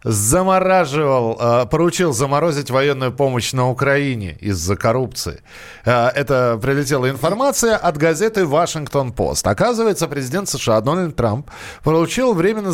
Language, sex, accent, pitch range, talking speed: Russian, male, native, 125-170 Hz, 110 wpm